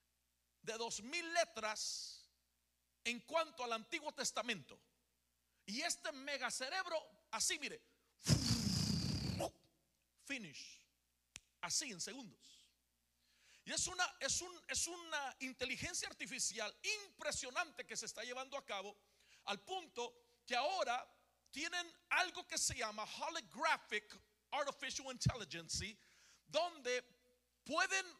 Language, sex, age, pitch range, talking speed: Spanish, male, 50-69, 215-320 Hz, 105 wpm